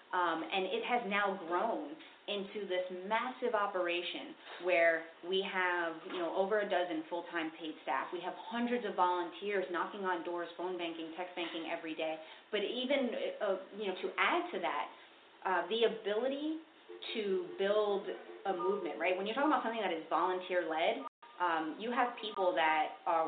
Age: 30-49